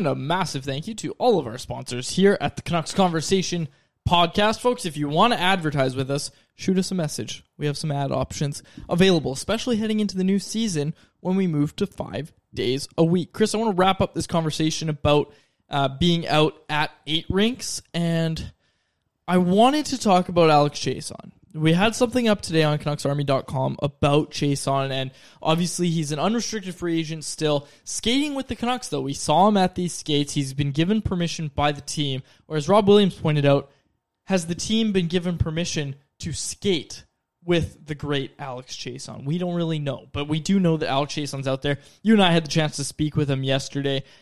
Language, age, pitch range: English, 20-39, 145-185 Hz